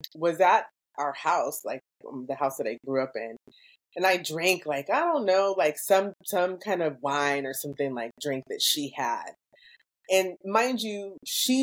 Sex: female